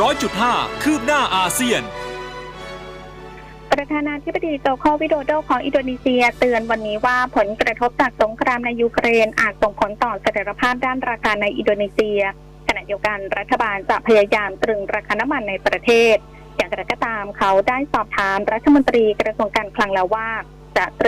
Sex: female